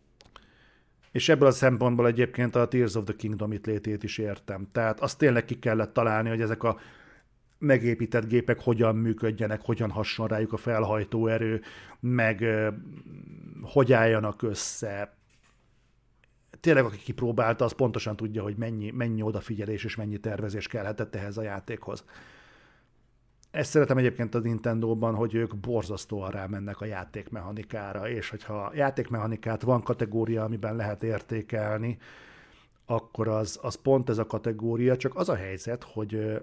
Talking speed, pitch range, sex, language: 140 wpm, 110-120 Hz, male, Hungarian